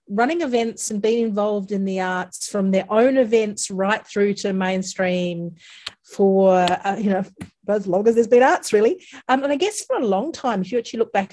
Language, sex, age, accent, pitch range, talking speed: English, female, 40-59, Australian, 190-240 Hz, 210 wpm